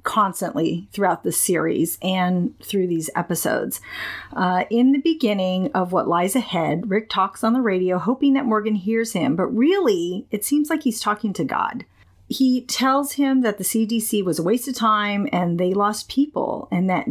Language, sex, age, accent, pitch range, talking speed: English, female, 40-59, American, 180-230 Hz, 180 wpm